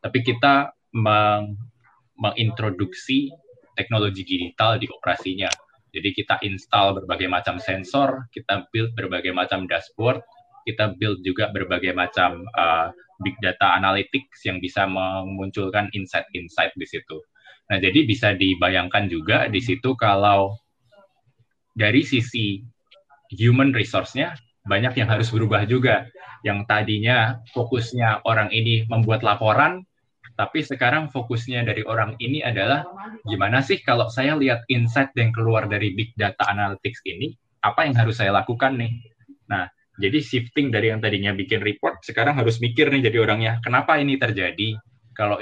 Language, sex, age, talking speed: Indonesian, male, 20-39, 135 wpm